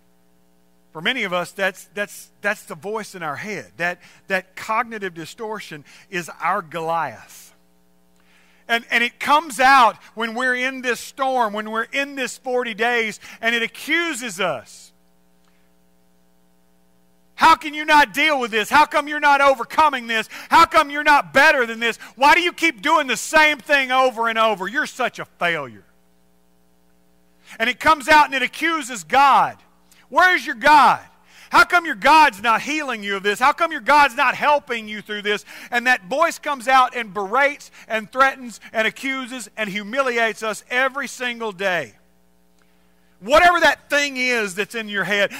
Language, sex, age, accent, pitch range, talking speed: English, male, 40-59, American, 190-280 Hz, 170 wpm